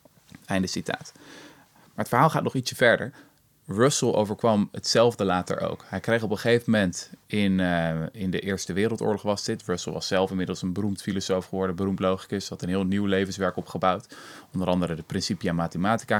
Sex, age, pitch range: male, 20-39, 90-105 Hz